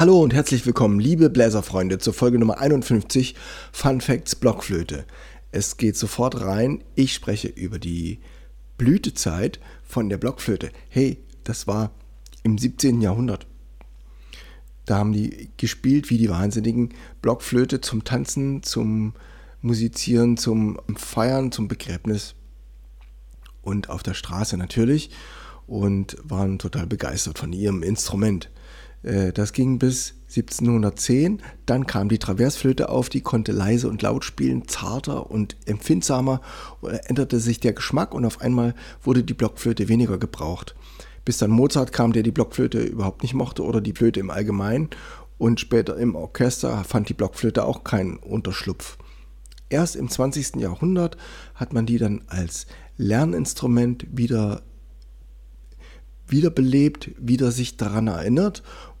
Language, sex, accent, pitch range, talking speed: German, male, German, 95-125 Hz, 130 wpm